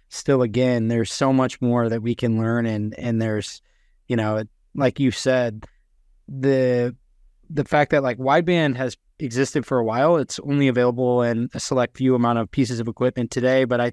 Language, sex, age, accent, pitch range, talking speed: English, male, 20-39, American, 115-130 Hz, 190 wpm